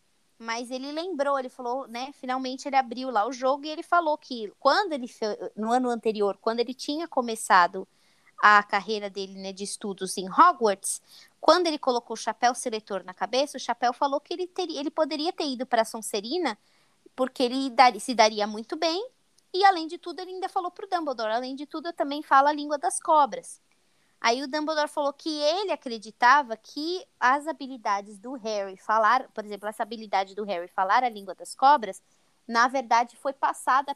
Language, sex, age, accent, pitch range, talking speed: Portuguese, female, 20-39, Brazilian, 220-300 Hz, 190 wpm